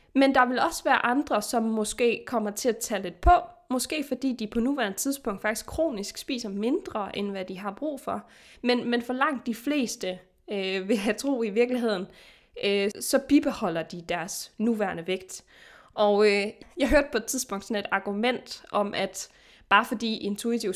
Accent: native